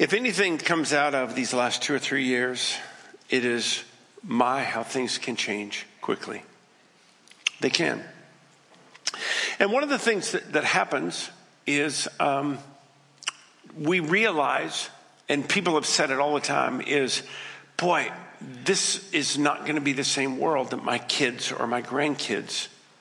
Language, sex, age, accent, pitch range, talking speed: English, male, 50-69, American, 130-180 Hz, 150 wpm